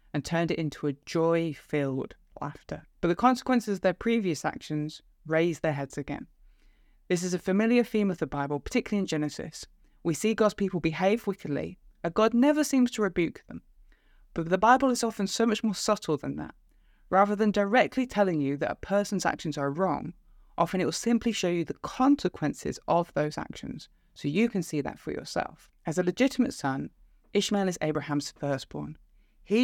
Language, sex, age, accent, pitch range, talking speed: English, female, 20-39, British, 150-210 Hz, 185 wpm